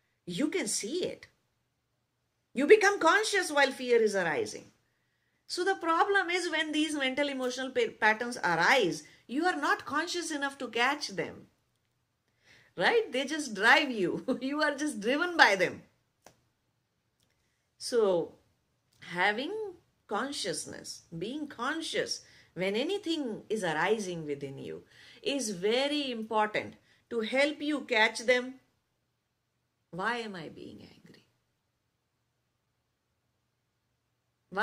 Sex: female